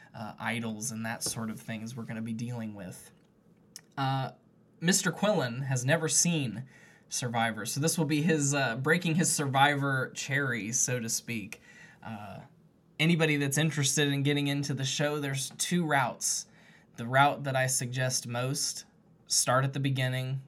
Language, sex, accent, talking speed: English, male, American, 160 wpm